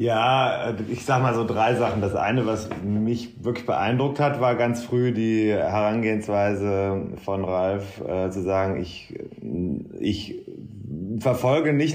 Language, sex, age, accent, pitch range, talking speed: German, male, 30-49, German, 100-115 Hz, 140 wpm